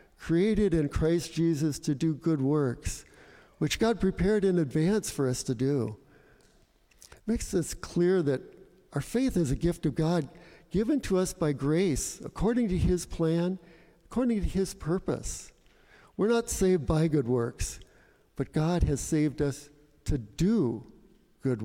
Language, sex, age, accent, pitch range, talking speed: English, male, 60-79, American, 135-175 Hz, 155 wpm